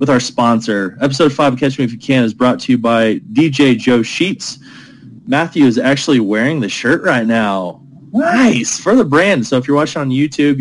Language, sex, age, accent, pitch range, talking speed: English, male, 20-39, American, 120-145 Hz, 210 wpm